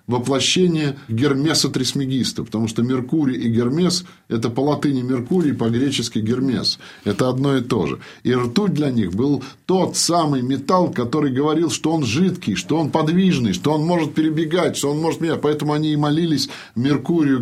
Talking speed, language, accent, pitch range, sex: 170 wpm, Russian, native, 130-170 Hz, male